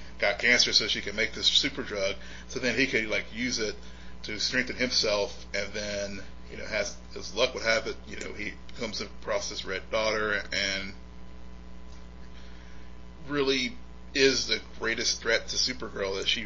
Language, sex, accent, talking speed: English, male, American, 170 wpm